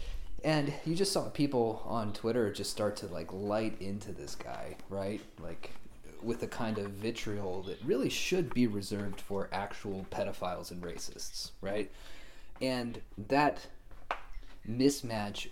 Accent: American